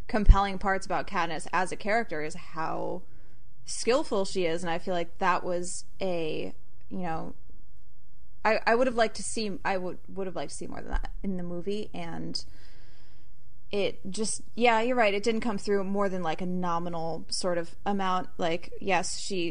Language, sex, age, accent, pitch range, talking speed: English, female, 20-39, American, 175-215 Hz, 190 wpm